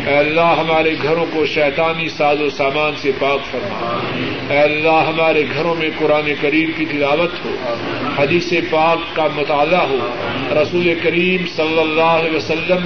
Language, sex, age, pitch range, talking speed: Urdu, male, 50-69, 145-165 Hz, 155 wpm